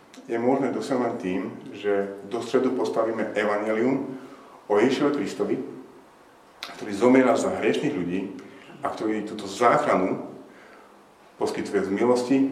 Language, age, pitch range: Slovak, 40-59, 100-125 Hz